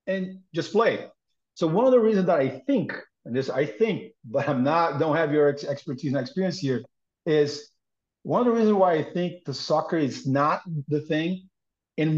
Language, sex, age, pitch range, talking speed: English, male, 50-69, 145-175 Hz, 205 wpm